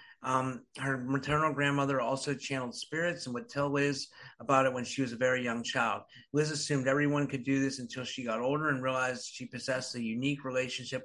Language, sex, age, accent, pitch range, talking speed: English, male, 50-69, American, 125-145 Hz, 200 wpm